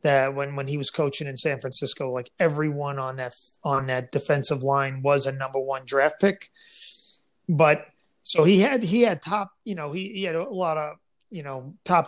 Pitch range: 150-205 Hz